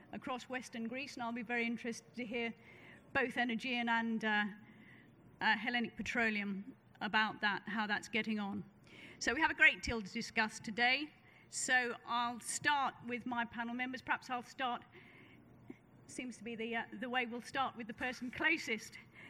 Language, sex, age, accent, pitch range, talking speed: English, female, 40-59, British, 230-260 Hz, 170 wpm